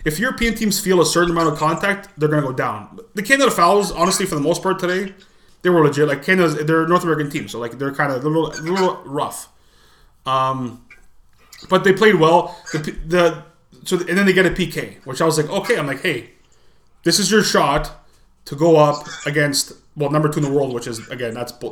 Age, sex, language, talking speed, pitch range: 20-39, male, English, 225 wpm, 145-185 Hz